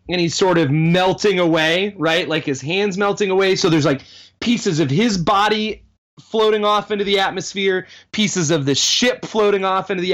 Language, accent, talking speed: English, American, 190 wpm